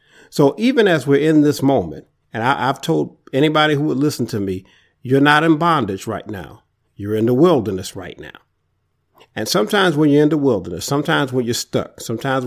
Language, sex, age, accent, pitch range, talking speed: English, male, 50-69, American, 115-145 Hz, 195 wpm